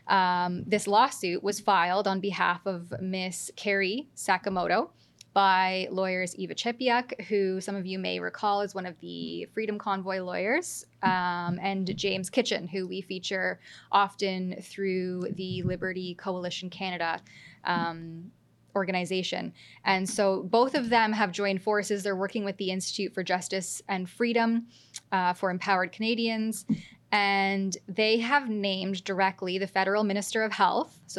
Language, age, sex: English, 10-29, female